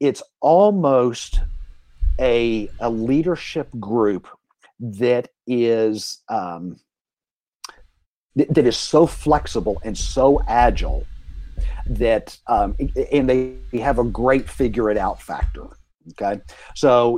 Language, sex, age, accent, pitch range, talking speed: English, male, 50-69, American, 100-135 Hz, 100 wpm